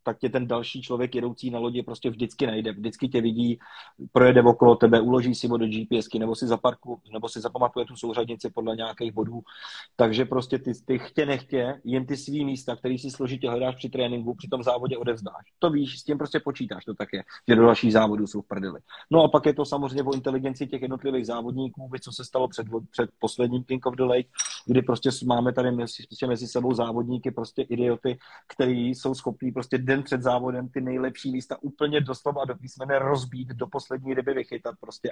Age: 30-49